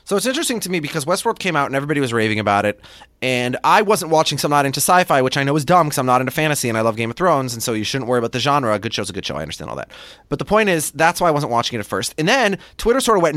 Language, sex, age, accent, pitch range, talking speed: English, male, 30-49, American, 120-175 Hz, 345 wpm